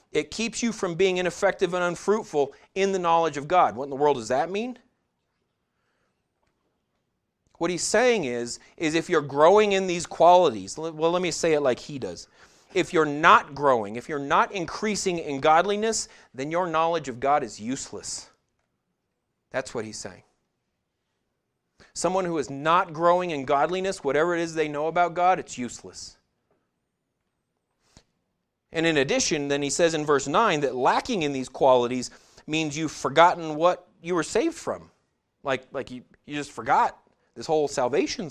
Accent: American